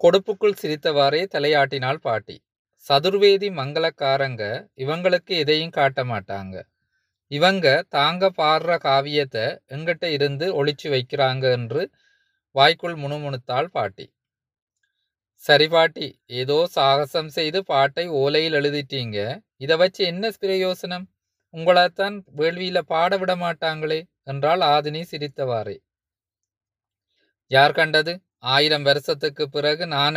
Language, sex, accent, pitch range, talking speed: Tamil, male, native, 135-170 Hz, 95 wpm